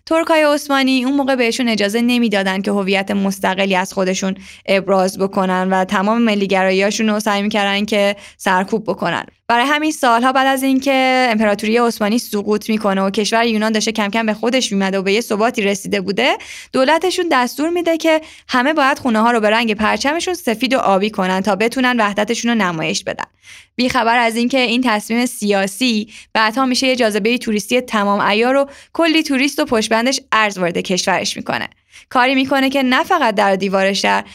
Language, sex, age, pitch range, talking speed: Persian, female, 20-39, 205-265 Hz, 170 wpm